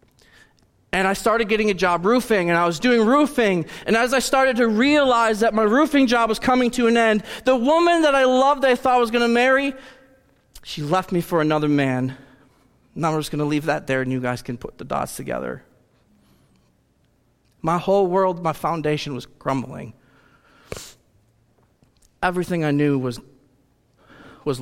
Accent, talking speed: American, 175 wpm